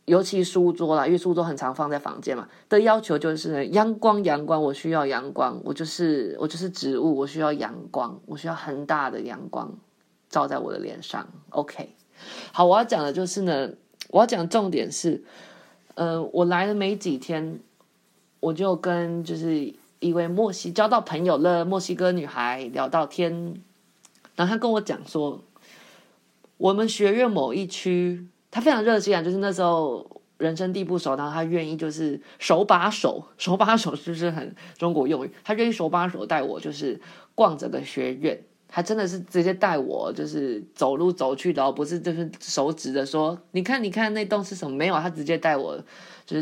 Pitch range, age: 150-190 Hz, 20-39